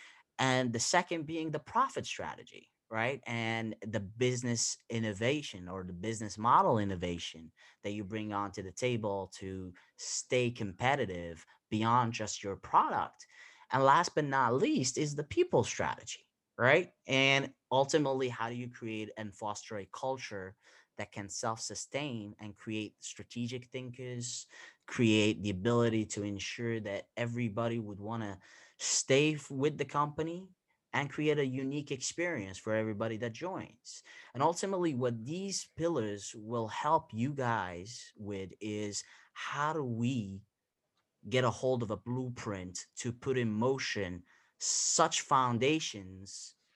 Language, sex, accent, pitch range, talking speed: English, male, American, 105-135 Hz, 135 wpm